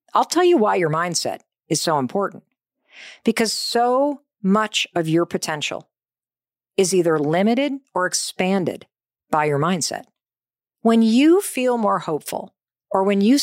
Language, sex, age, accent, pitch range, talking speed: English, female, 50-69, American, 180-245 Hz, 140 wpm